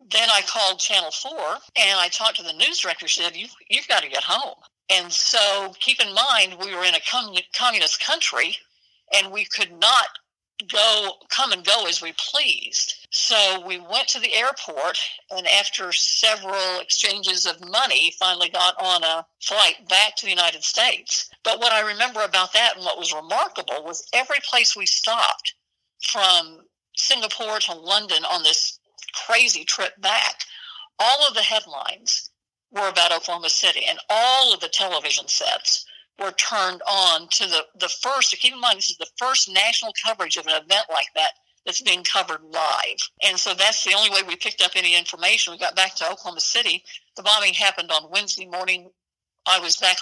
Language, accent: English, American